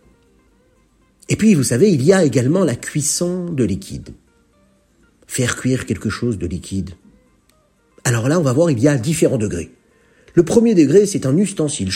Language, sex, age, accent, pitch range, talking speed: French, male, 50-69, French, 125-205 Hz, 170 wpm